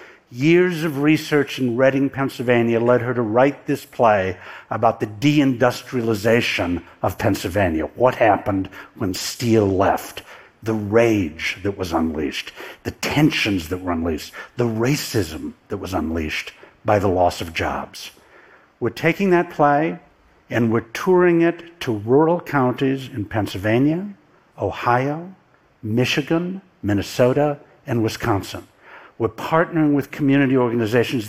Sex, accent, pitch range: male, American, 110-150 Hz